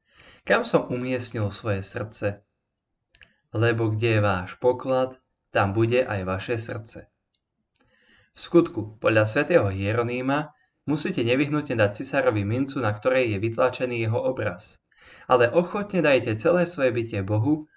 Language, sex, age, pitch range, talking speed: Slovak, male, 20-39, 105-130 Hz, 130 wpm